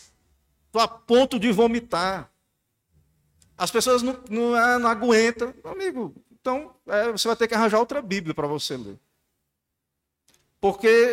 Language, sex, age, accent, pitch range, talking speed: Portuguese, male, 40-59, Brazilian, 145-230 Hz, 140 wpm